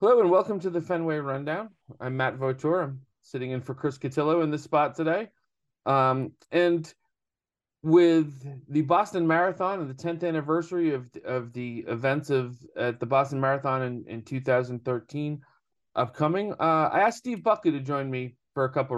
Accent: American